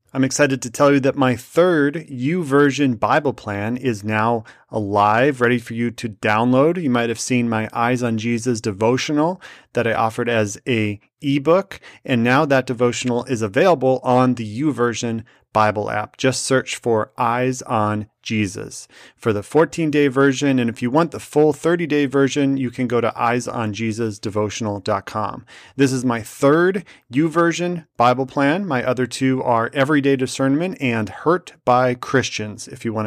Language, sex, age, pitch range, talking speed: English, male, 30-49, 115-135 Hz, 165 wpm